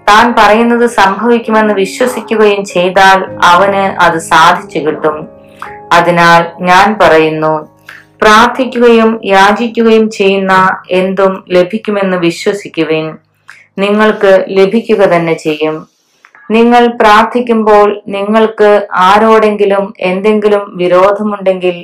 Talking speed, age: 75 wpm, 20-39